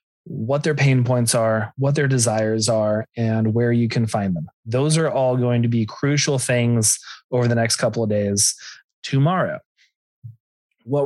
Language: English